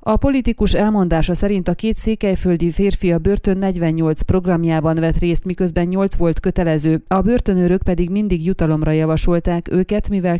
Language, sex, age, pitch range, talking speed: Hungarian, female, 30-49, 165-195 Hz, 150 wpm